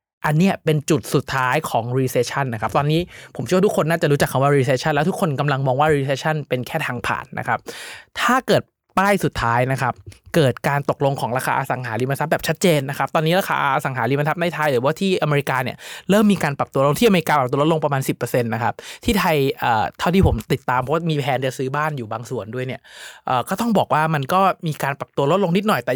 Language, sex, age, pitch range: Thai, male, 20-39, 130-170 Hz